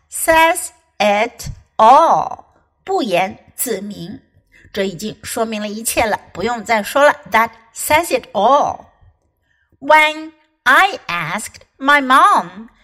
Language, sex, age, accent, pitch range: Chinese, female, 60-79, American, 200-300 Hz